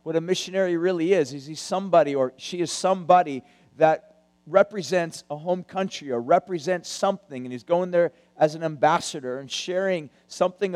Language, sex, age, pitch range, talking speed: English, male, 50-69, 160-195 Hz, 165 wpm